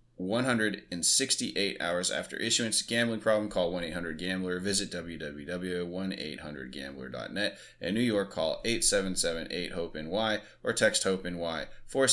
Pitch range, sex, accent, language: 85-105 Hz, male, American, English